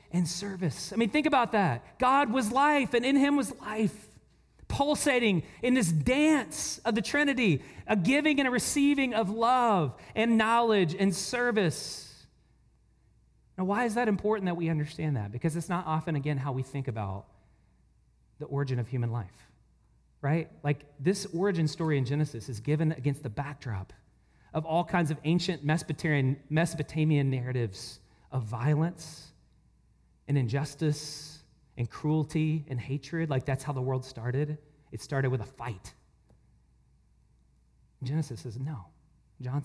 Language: English